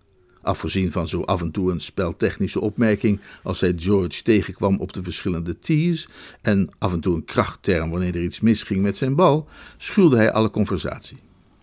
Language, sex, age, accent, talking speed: Dutch, male, 50-69, Dutch, 175 wpm